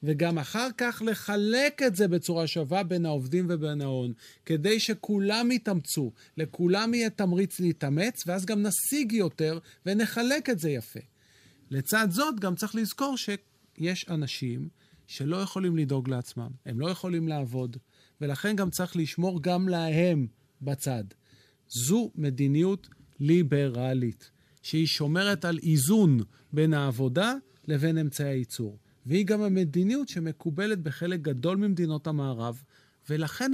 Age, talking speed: 40-59, 125 wpm